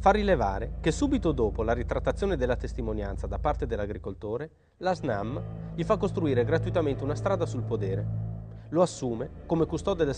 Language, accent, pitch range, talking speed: Italian, native, 85-130 Hz, 160 wpm